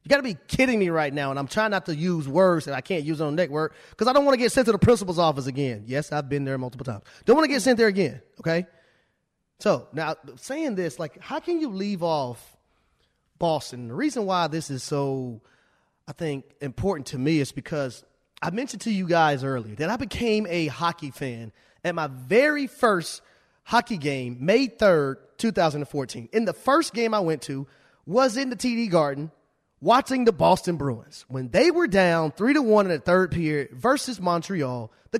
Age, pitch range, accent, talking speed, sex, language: 30-49, 145-215 Hz, American, 210 wpm, male, English